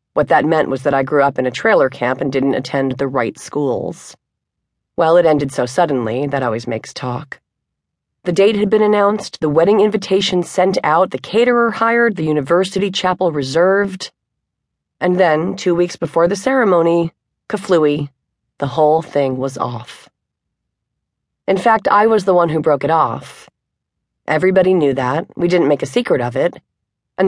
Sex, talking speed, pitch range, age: female, 170 wpm, 135-185 Hz, 30-49